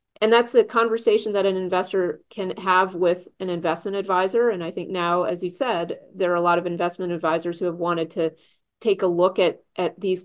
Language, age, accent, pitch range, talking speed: English, 30-49, American, 165-190 Hz, 215 wpm